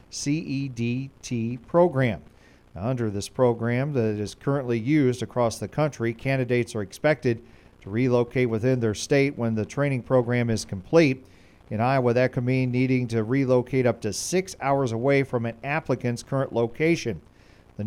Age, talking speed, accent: 40-59, 150 wpm, American